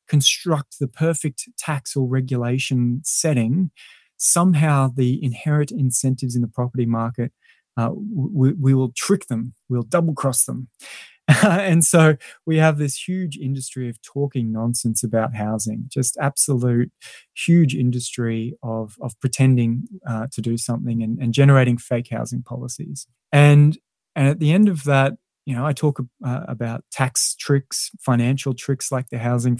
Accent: Australian